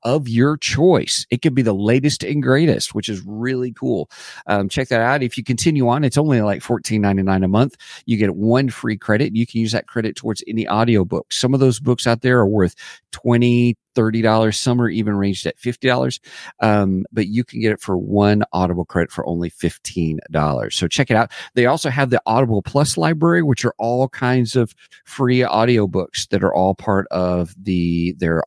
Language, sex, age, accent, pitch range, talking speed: English, male, 40-59, American, 95-125 Hz, 210 wpm